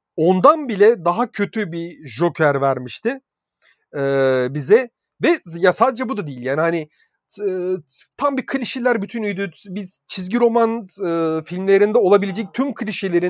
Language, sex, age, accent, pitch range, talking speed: Turkish, male, 40-59, native, 165-220 Hz, 135 wpm